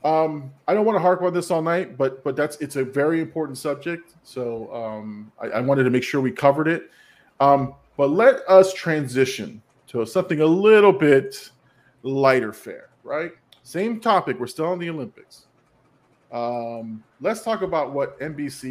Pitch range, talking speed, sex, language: 125-175 Hz, 175 wpm, male, English